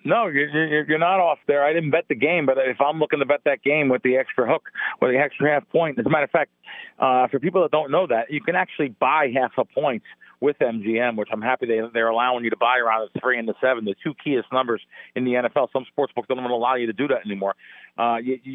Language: English